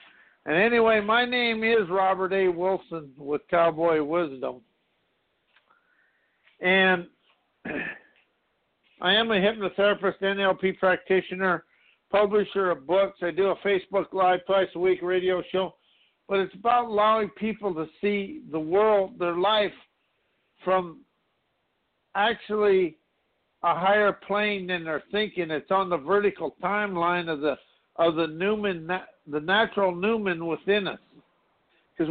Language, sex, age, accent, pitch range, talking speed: English, male, 60-79, American, 175-210 Hz, 125 wpm